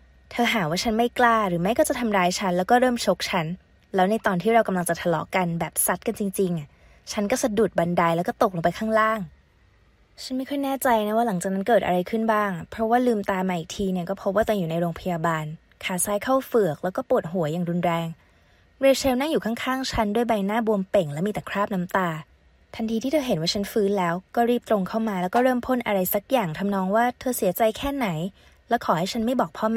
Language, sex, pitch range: Thai, female, 180-230 Hz